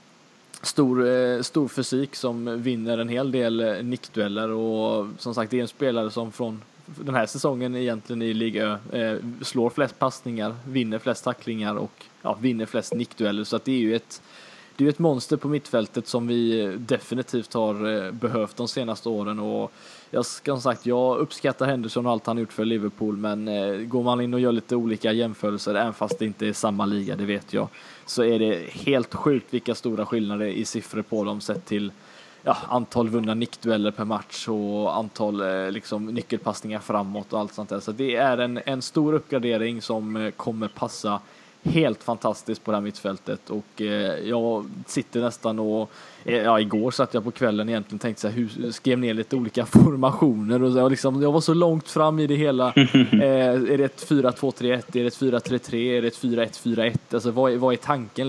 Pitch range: 110-130 Hz